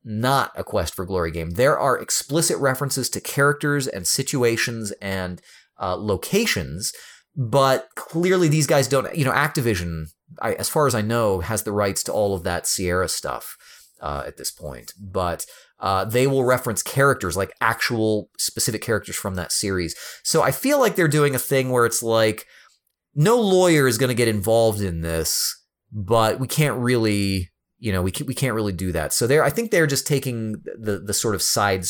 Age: 30-49